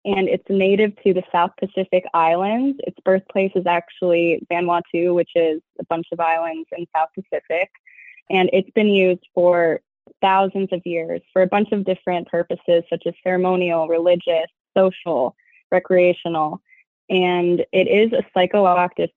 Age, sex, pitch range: 20-39, female, 170-195 Hz